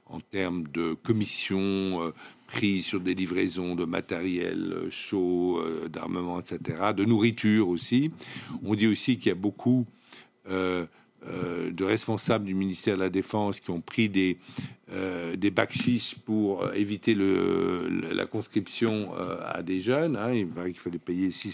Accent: French